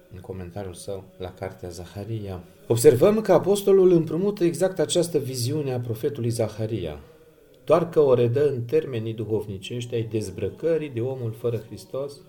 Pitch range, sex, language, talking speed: 100-125 Hz, male, Romanian, 140 wpm